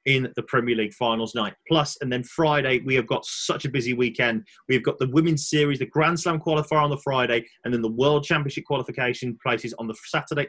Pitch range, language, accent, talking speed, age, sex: 115-155 Hz, English, British, 225 wpm, 30-49, male